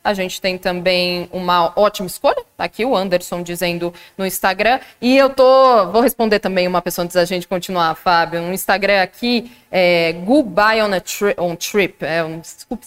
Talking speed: 195 wpm